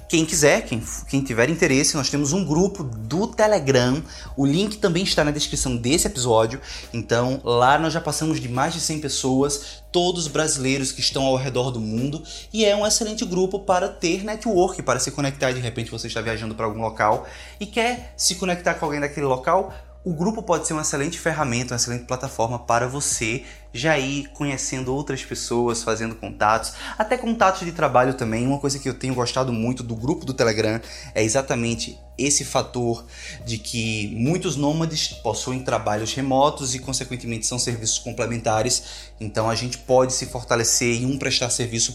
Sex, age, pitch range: male, 20-39, 120-160 Hz